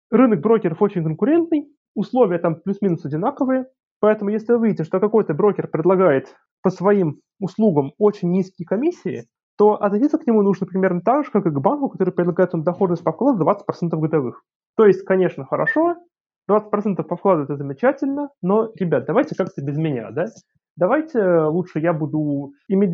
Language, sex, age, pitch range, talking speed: Russian, male, 20-39, 165-225 Hz, 165 wpm